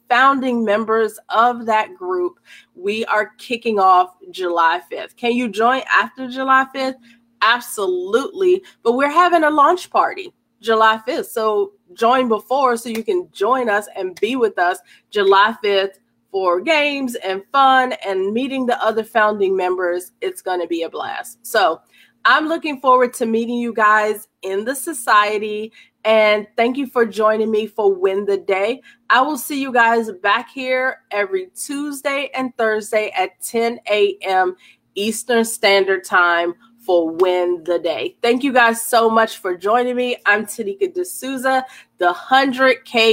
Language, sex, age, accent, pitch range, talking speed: English, female, 30-49, American, 205-260 Hz, 155 wpm